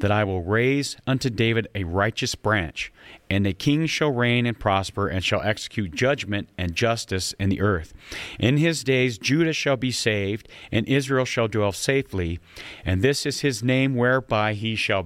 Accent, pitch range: American, 95-120 Hz